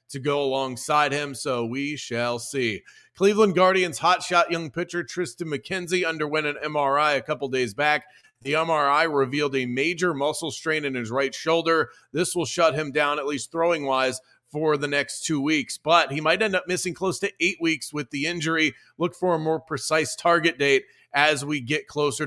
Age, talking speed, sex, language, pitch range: 40-59, 190 wpm, male, English, 140-165 Hz